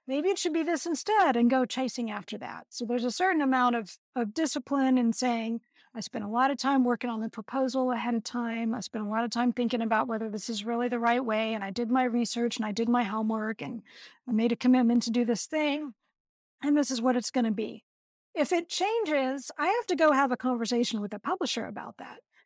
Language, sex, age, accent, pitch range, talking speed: English, female, 50-69, American, 230-280 Hz, 245 wpm